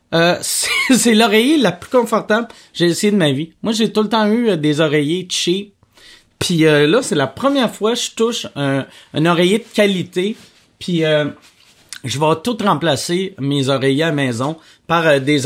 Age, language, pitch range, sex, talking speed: 30-49, French, 165-215 Hz, male, 185 wpm